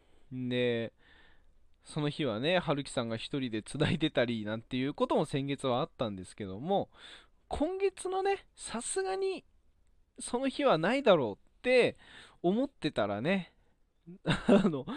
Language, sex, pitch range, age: Japanese, male, 120-200 Hz, 20-39